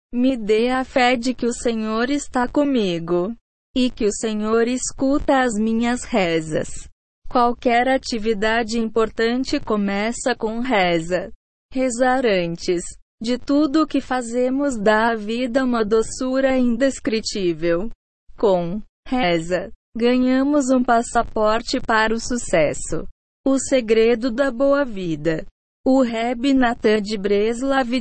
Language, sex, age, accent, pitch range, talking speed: Portuguese, female, 20-39, Brazilian, 210-260 Hz, 120 wpm